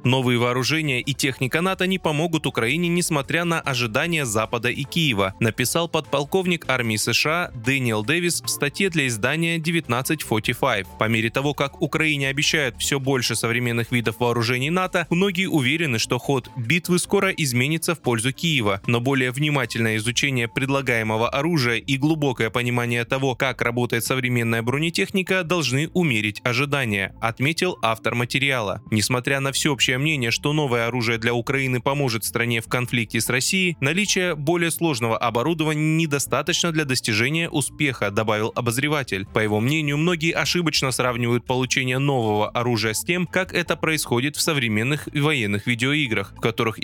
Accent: native